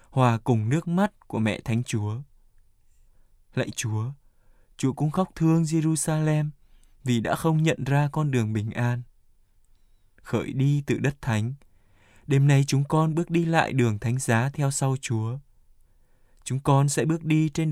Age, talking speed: 20-39, 165 wpm